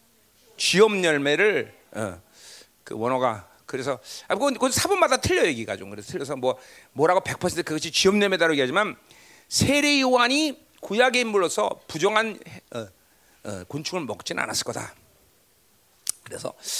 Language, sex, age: Korean, male, 40-59